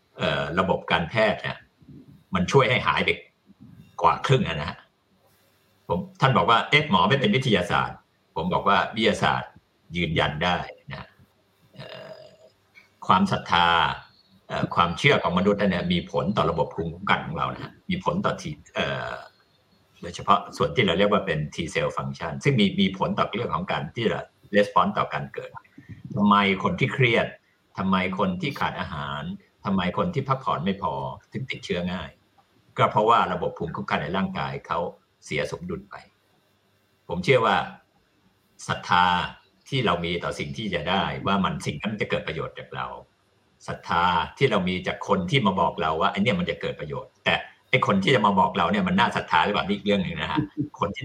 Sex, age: male, 60-79